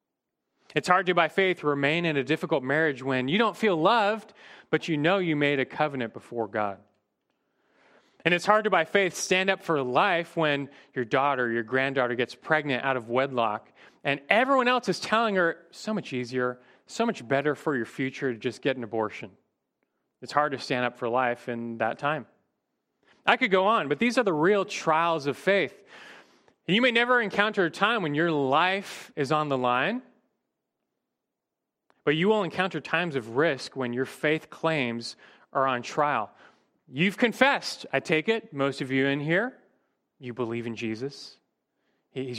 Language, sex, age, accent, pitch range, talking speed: English, male, 30-49, American, 130-180 Hz, 180 wpm